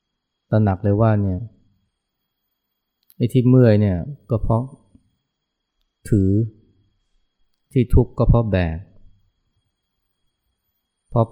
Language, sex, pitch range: Thai, male, 95-115 Hz